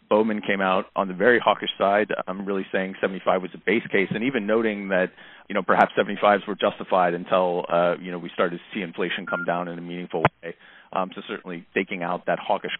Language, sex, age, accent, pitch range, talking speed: English, male, 40-59, American, 90-100 Hz, 225 wpm